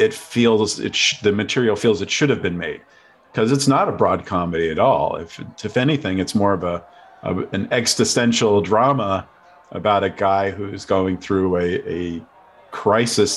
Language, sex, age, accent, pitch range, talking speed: English, male, 40-59, American, 95-110 Hz, 180 wpm